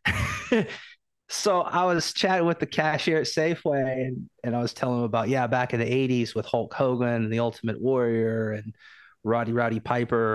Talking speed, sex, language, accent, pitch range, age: 185 wpm, male, English, American, 115-155 Hz, 30-49